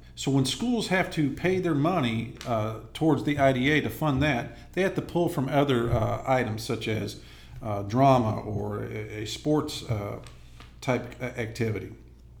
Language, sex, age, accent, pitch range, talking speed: English, male, 50-69, American, 115-155 Hz, 165 wpm